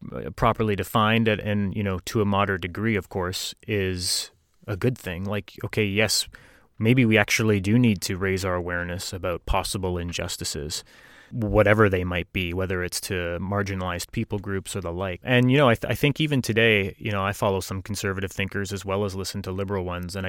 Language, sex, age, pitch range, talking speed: English, male, 30-49, 95-110 Hz, 200 wpm